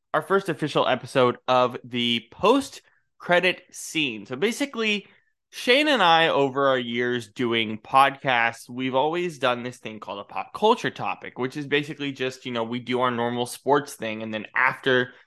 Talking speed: 175 wpm